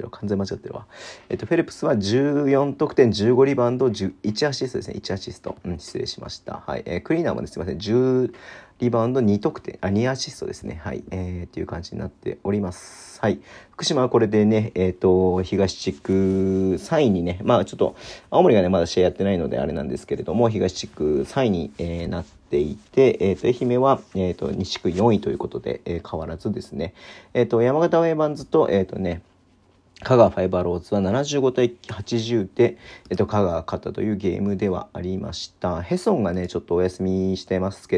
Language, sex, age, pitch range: Japanese, male, 40-59, 90-120 Hz